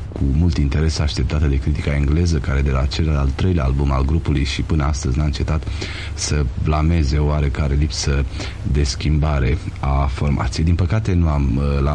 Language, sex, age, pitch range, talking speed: Romanian, male, 40-59, 70-95 Hz, 170 wpm